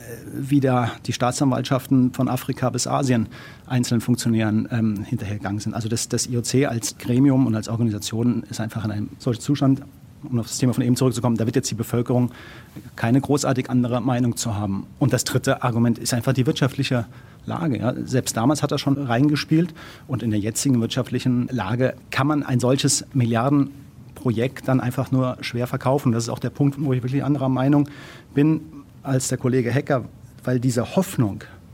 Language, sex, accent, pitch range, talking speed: German, male, German, 120-140 Hz, 180 wpm